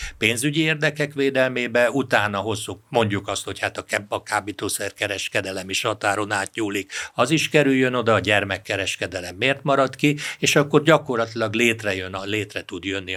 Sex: male